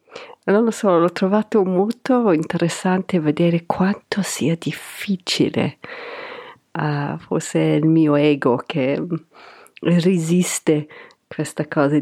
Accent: native